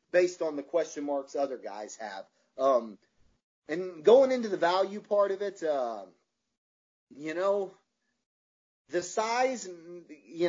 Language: English